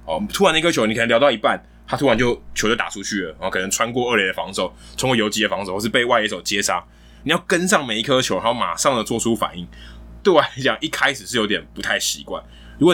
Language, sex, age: Chinese, male, 20-39